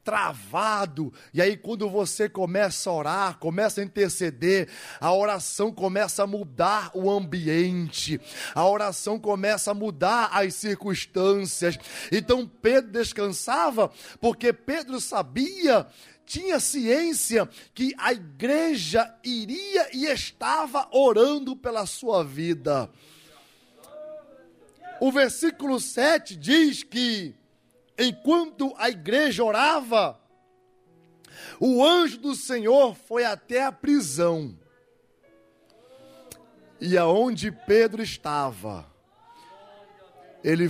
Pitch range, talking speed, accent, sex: 175-245 Hz, 95 wpm, Brazilian, male